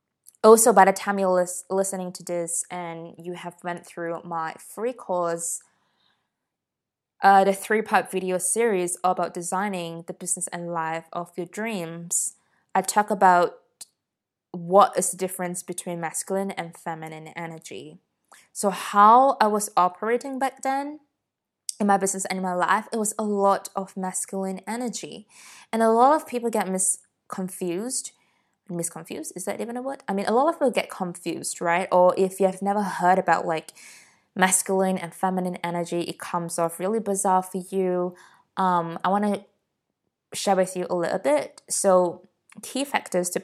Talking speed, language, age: 165 wpm, English, 20-39